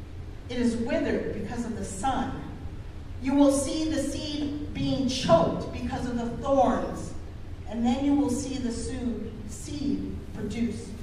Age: 40-59